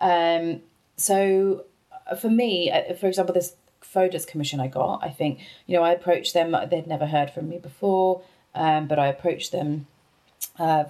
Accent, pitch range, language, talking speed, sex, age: British, 145-185 Hz, English, 165 wpm, female, 30-49